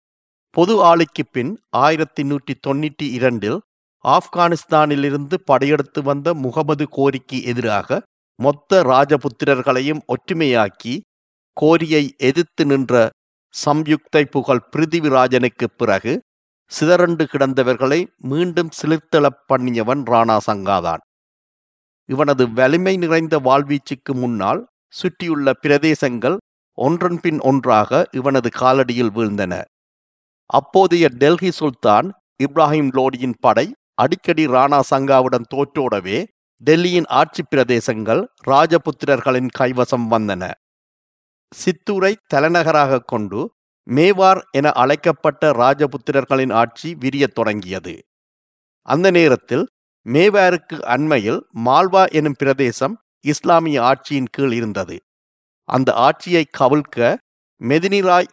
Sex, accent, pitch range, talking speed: male, native, 125-160 Hz, 80 wpm